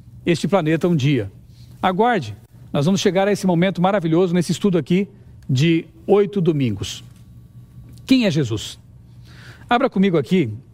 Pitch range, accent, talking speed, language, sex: 155-215 Hz, Brazilian, 135 wpm, Portuguese, male